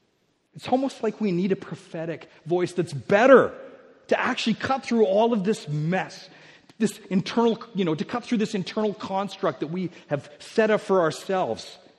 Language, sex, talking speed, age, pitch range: English, male, 175 wpm, 40-59, 150-215 Hz